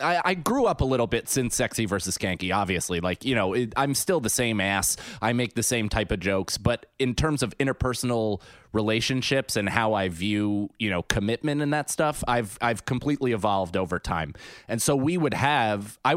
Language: English